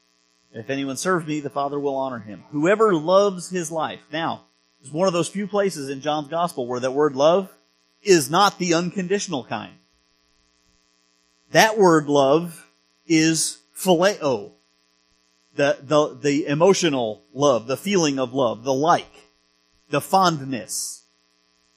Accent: American